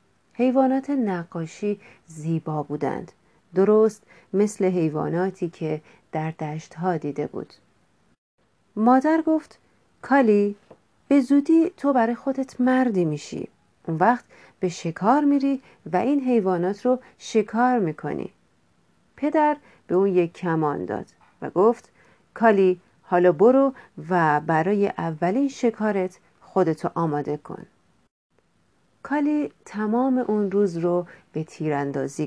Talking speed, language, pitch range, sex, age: 110 wpm, Persian, 165-235 Hz, female, 40-59